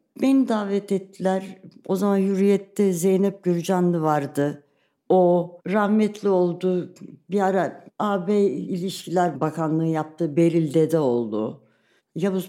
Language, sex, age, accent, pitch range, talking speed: Turkish, female, 60-79, native, 150-205 Hz, 105 wpm